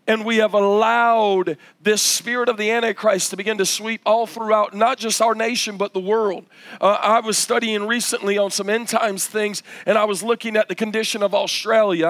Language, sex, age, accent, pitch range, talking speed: English, male, 40-59, American, 195-225 Hz, 205 wpm